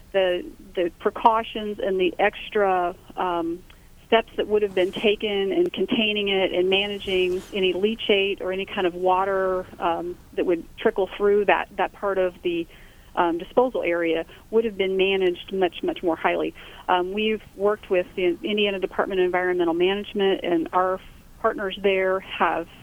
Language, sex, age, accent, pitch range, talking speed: English, female, 40-59, American, 175-200 Hz, 160 wpm